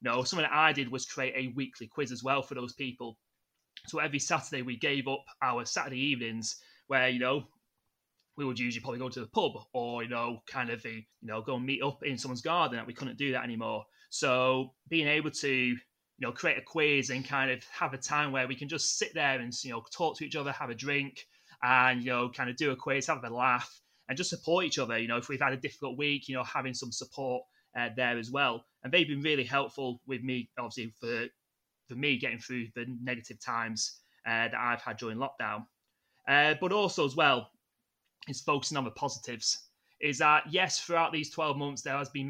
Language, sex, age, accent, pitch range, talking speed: English, male, 30-49, British, 125-145 Hz, 230 wpm